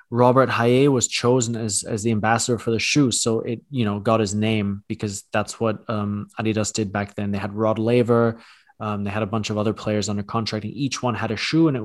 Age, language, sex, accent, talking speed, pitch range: 20-39, English, male, Canadian, 240 wpm, 110-125 Hz